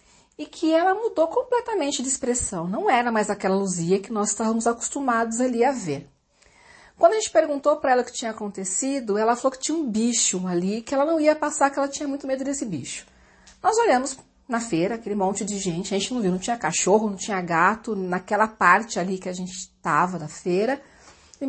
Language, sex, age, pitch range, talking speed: Portuguese, female, 40-59, 195-290 Hz, 210 wpm